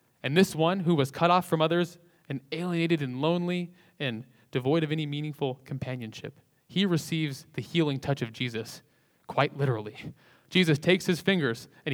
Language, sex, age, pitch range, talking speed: English, male, 20-39, 125-155 Hz, 165 wpm